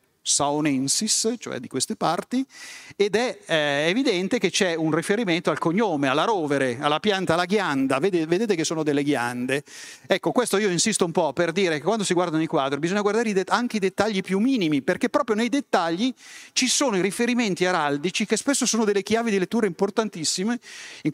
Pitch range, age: 145-215 Hz, 40-59